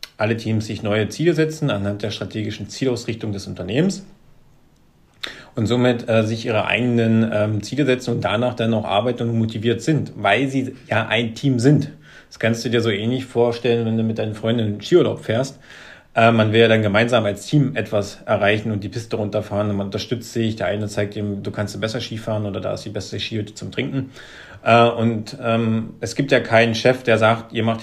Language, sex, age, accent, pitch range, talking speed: German, male, 40-59, German, 110-125 Hz, 205 wpm